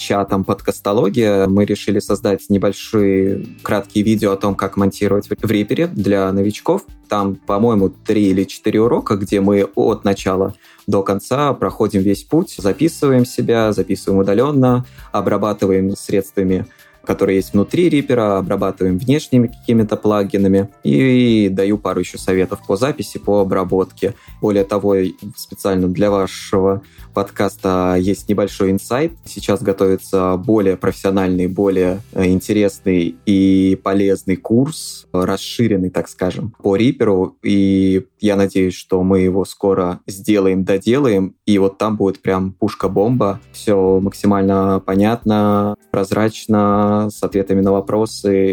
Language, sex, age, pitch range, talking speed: Russian, male, 20-39, 95-105 Hz, 125 wpm